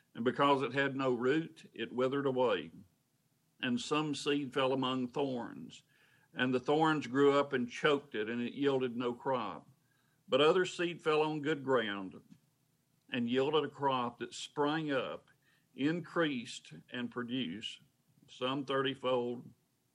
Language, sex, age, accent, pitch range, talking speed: English, male, 50-69, American, 125-140 Hz, 140 wpm